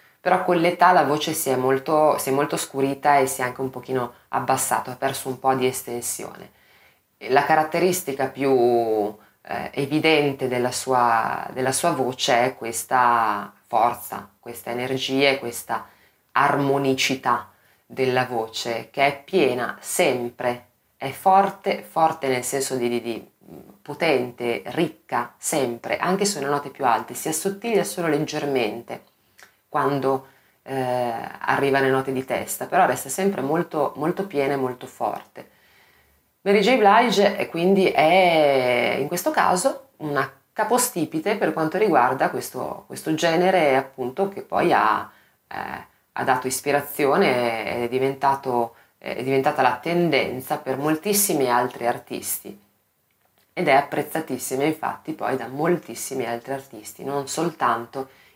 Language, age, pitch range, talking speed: Italian, 20-39, 125-160 Hz, 130 wpm